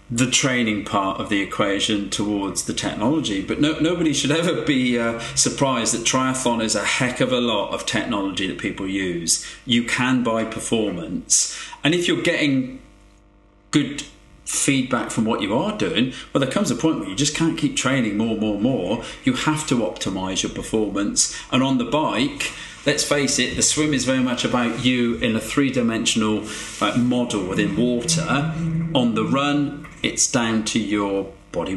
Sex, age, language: male, 40-59, English